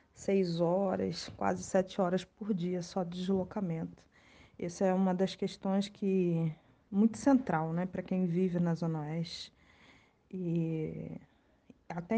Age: 20-39